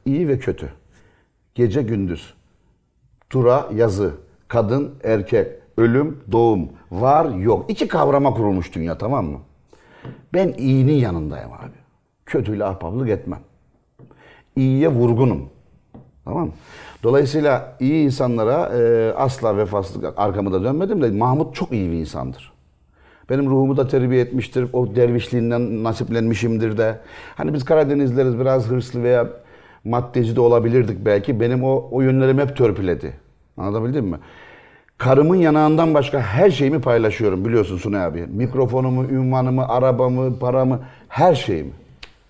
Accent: native